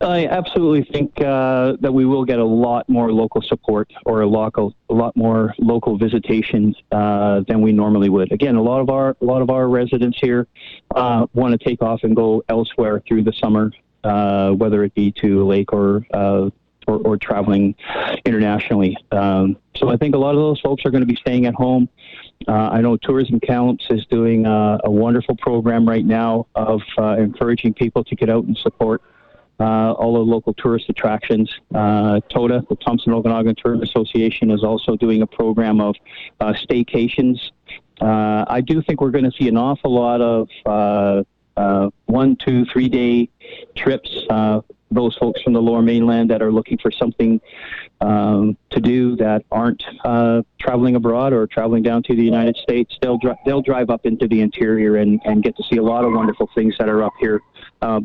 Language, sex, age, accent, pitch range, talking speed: English, male, 40-59, American, 110-125 Hz, 195 wpm